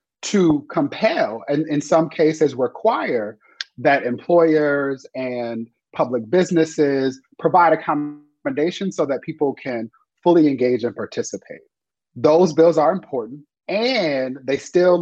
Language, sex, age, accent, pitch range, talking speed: English, male, 30-49, American, 135-180 Hz, 115 wpm